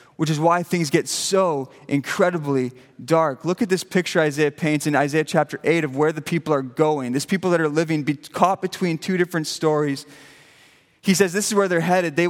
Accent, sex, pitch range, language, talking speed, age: American, male, 150-180 Hz, English, 205 wpm, 20-39